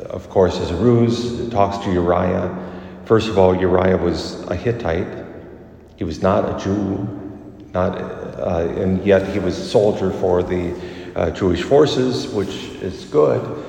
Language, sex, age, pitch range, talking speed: English, male, 40-59, 90-105 Hz, 155 wpm